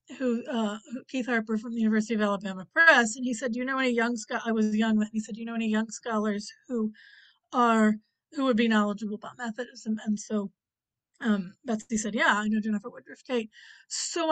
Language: English